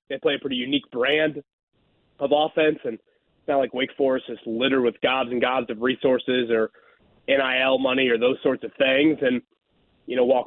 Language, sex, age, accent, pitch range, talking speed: English, male, 30-49, American, 130-160 Hz, 195 wpm